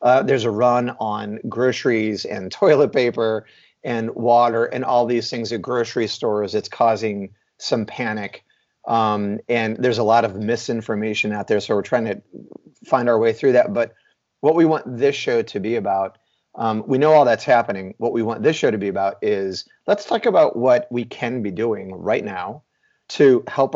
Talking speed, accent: 190 wpm, American